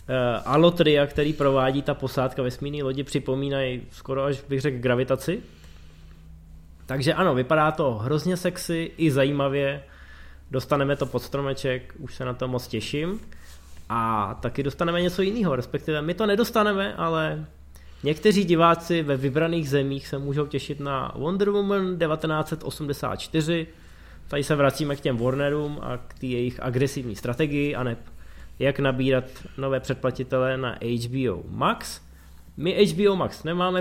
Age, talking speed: 20-39, 140 wpm